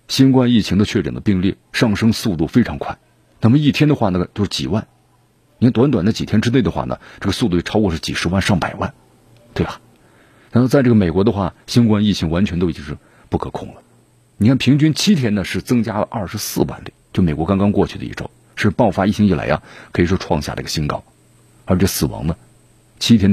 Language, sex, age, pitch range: Chinese, male, 50-69, 85-120 Hz